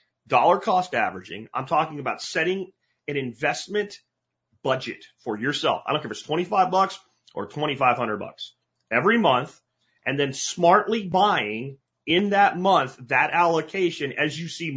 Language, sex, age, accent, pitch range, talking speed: English, male, 30-49, American, 135-190 Hz, 145 wpm